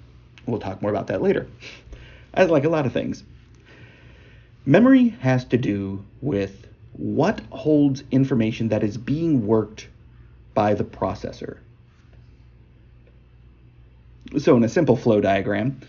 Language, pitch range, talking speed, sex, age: English, 95-130 Hz, 120 wpm, male, 40-59